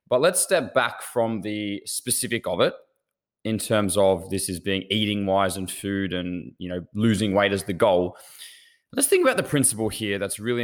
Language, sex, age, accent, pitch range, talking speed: English, male, 20-39, Australian, 100-125 Hz, 195 wpm